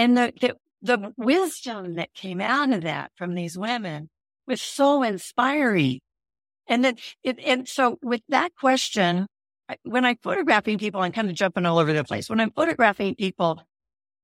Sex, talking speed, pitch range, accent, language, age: female, 170 wpm, 165-240 Hz, American, English, 50-69